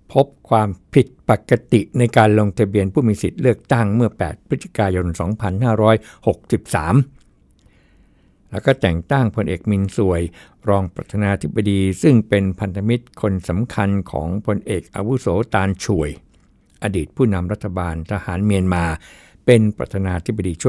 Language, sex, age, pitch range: Thai, male, 60-79, 90-110 Hz